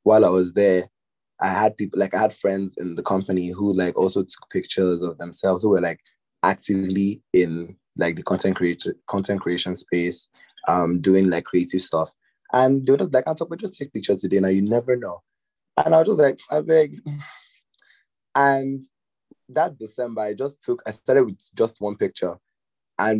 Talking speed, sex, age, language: 190 wpm, male, 20-39, English